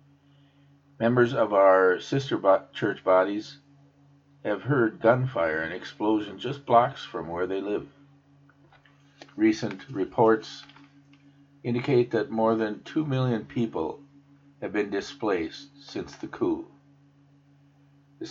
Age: 50-69